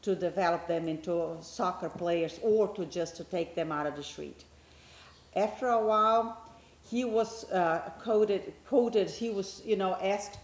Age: 40-59